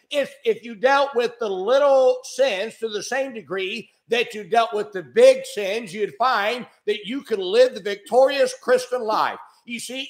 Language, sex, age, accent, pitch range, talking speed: English, male, 50-69, American, 200-285 Hz, 185 wpm